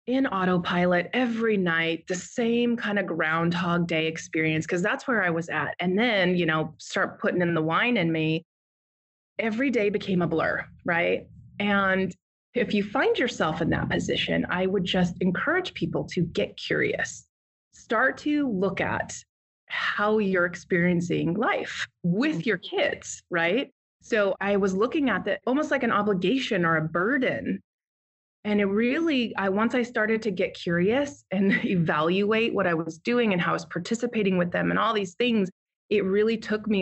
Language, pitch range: English, 175-225 Hz